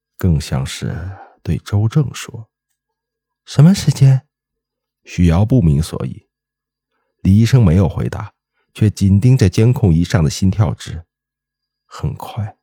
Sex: male